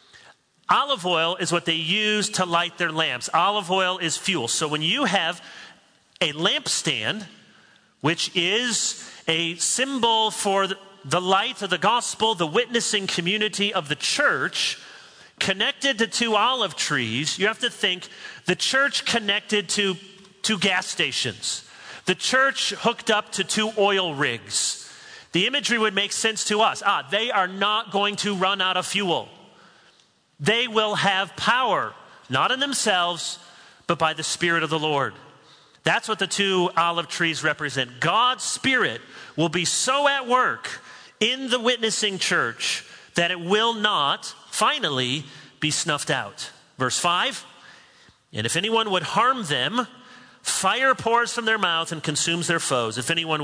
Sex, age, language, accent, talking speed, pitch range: male, 40-59, English, American, 155 wpm, 165-220 Hz